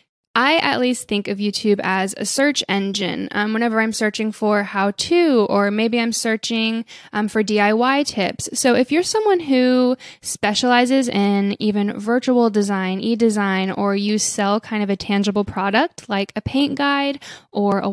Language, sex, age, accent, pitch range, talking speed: English, female, 10-29, American, 200-245 Hz, 165 wpm